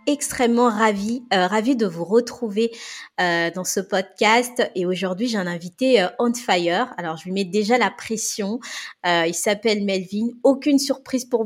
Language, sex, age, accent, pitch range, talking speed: French, female, 20-39, French, 195-245 Hz, 175 wpm